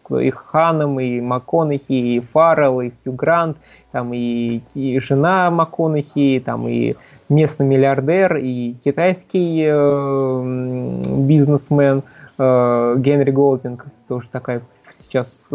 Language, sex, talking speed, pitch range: Russian, male, 100 wpm, 130-160 Hz